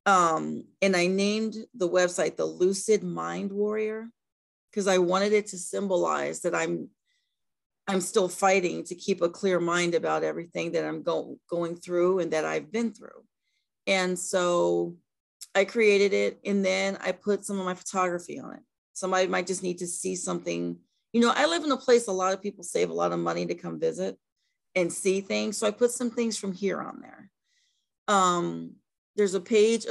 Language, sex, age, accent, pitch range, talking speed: English, female, 40-59, American, 165-205 Hz, 190 wpm